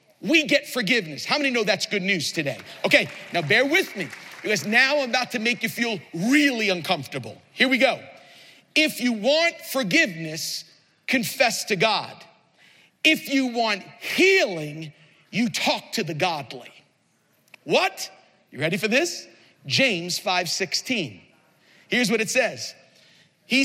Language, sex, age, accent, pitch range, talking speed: English, male, 50-69, American, 210-335 Hz, 140 wpm